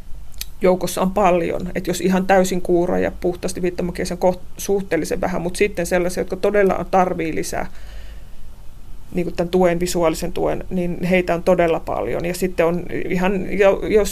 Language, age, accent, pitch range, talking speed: Finnish, 30-49, native, 175-200 Hz, 150 wpm